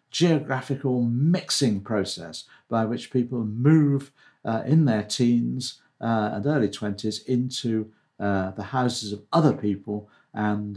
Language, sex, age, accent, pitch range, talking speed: English, male, 60-79, British, 105-135 Hz, 130 wpm